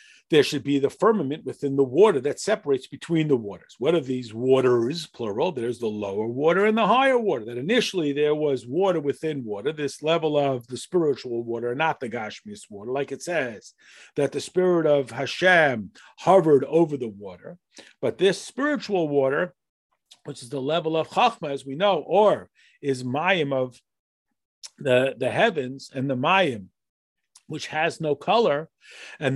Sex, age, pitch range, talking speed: male, 50-69, 135-190 Hz, 170 wpm